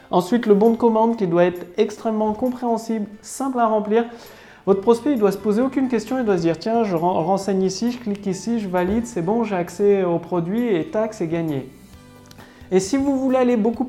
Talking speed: 225 wpm